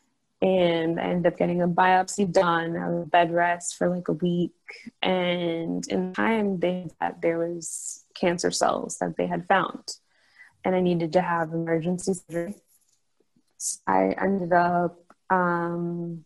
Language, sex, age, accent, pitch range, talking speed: English, female, 20-39, American, 165-185 Hz, 150 wpm